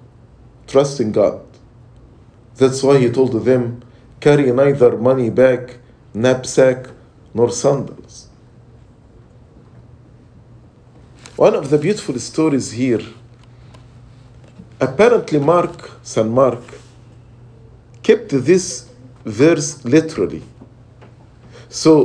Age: 50-69